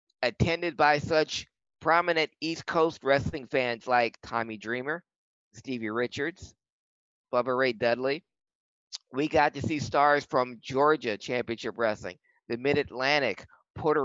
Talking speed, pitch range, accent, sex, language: 120 wpm, 125-155 Hz, American, male, English